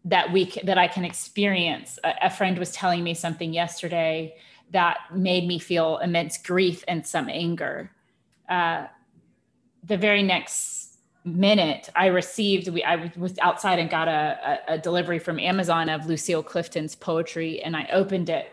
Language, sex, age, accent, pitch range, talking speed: English, female, 30-49, American, 170-200 Hz, 160 wpm